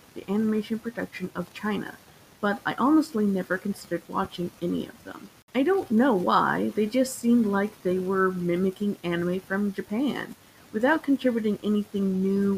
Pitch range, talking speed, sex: 185-240 Hz, 155 wpm, female